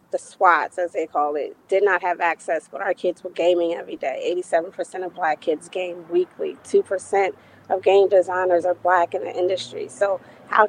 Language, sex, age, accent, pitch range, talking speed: English, female, 20-39, American, 175-195 Hz, 195 wpm